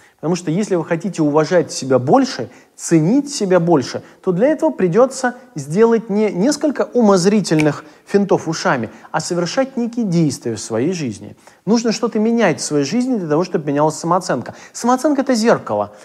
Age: 30-49